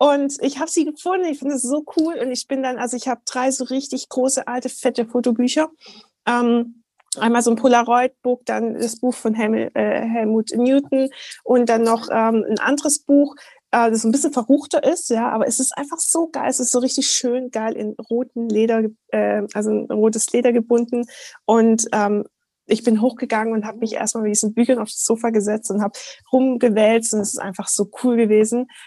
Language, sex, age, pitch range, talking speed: German, female, 20-39, 225-265 Hz, 200 wpm